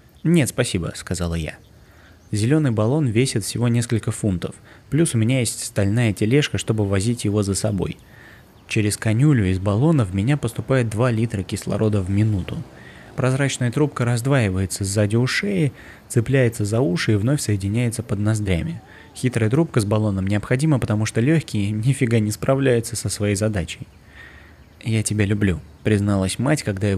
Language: Russian